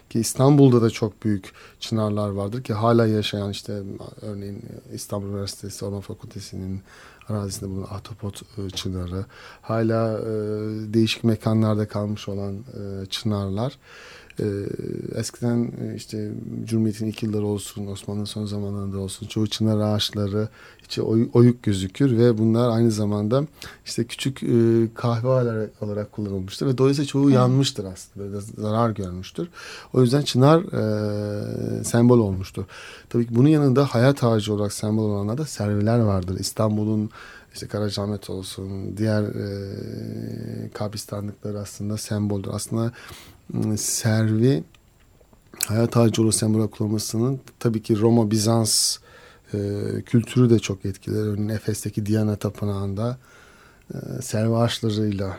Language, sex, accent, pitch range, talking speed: Turkish, male, native, 100-115 Hz, 120 wpm